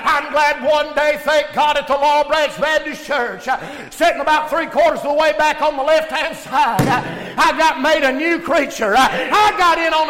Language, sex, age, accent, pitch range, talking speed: English, male, 50-69, American, 215-305 Hz, 210 wpm